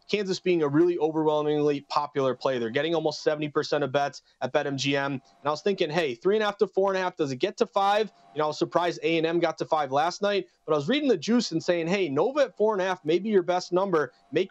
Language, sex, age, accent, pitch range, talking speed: English, male, 30-49, American, 155-185 Hz, 235 wpm